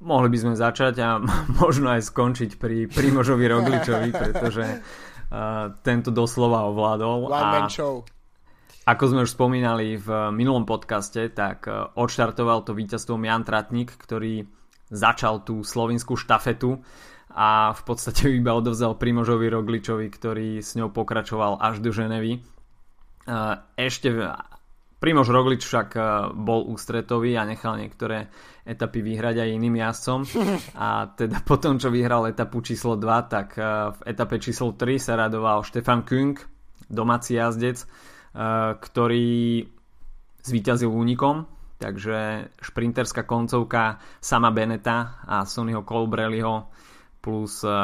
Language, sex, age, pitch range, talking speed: Slovak, male, 20-39, 110-120 Hz, 115 wpm